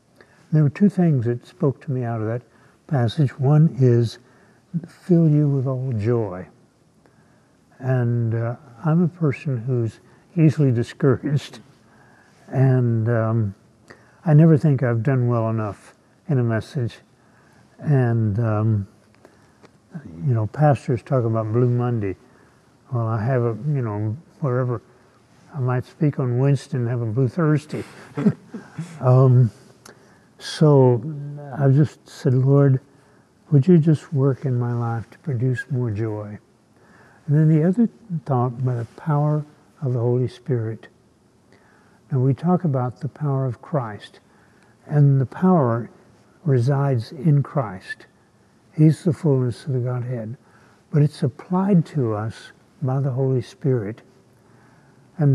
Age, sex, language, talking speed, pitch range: 60-79, male, English, 135 wpm, 120-145 Hz